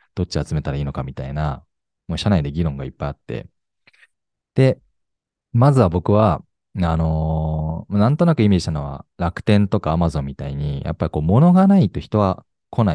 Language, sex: Japanese, male